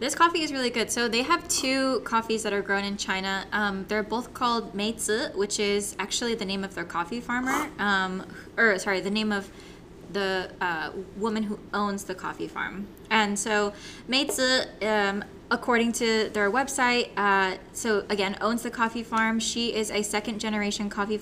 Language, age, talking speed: English, 10-29, 185 wpm